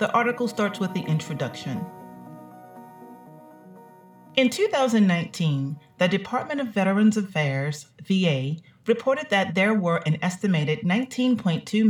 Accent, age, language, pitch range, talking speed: American, 40-59, English, 150-210 Hz, 105 wpm